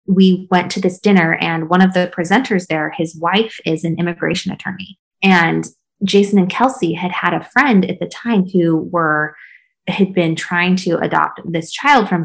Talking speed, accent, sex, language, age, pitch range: 185 wpm, American, female, English, 20-39, 160-195 Hz